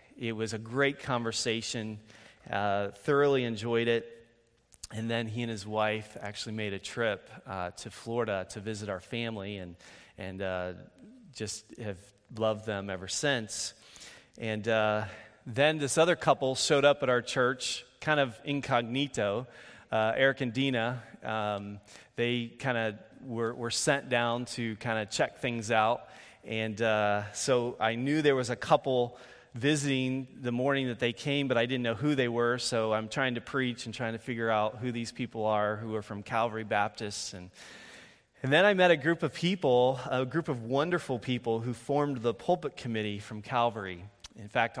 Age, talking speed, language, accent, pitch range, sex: 30-49, 175 wpm, English, American, 110-130 Hz, male